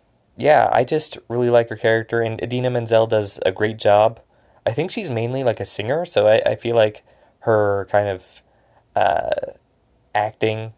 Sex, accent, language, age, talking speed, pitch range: male, American, English, 20-39, 175 wpm, 100-120 Hz